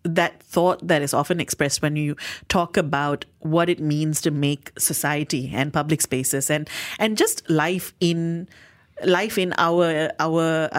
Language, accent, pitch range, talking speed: English, Indian, 150-210 Hz, 155 wpm